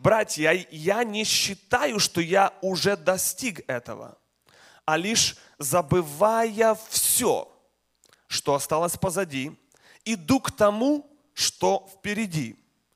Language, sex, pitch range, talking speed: Russian, male, 155-205 Hz, 95 wpm